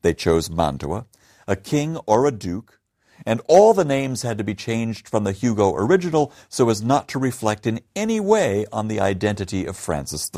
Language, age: English, 60-79